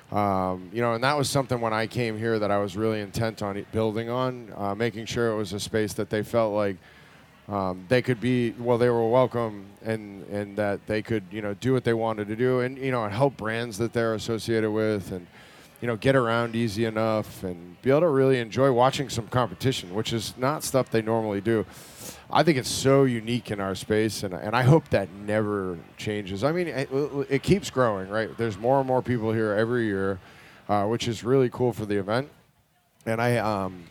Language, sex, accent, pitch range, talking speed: English, male, American, 105-125 Hz, 225 wpm